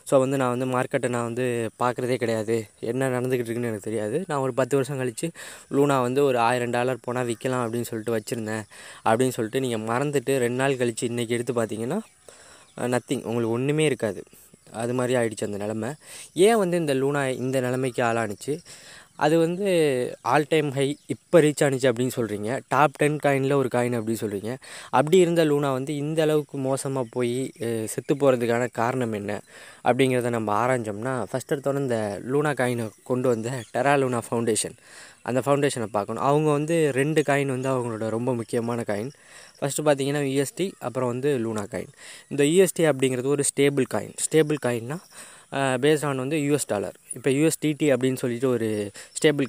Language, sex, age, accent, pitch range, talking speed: Tamil, female, 20-39, native, 120-145 Hz, 160 wpm